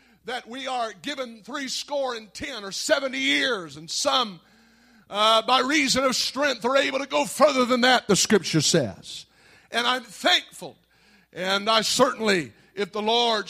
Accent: American